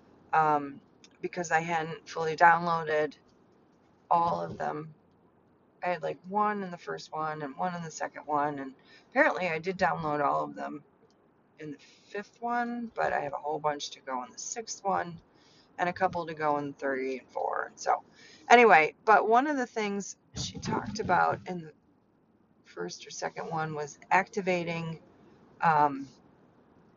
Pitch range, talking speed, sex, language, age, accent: 150-220 Hz, 165 wpm, female, English, 30-49, American